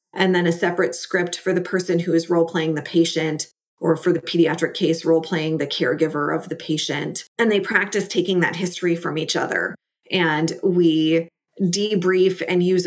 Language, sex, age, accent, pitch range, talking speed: English, female, 30-49, American, 165-180 Hz, 175 wpm